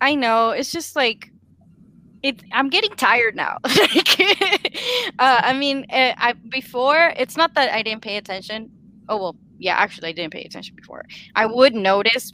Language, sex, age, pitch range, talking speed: English, female, 10-29, 185-240 Hz, 165 wpm